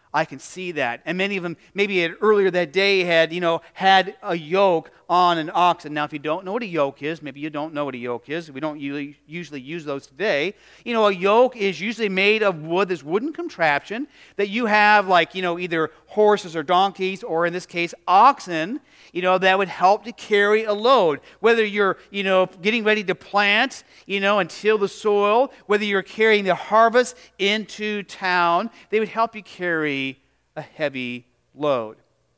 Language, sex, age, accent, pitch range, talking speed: English, male, 40-59, American, 165-215 Hz, 205 wpm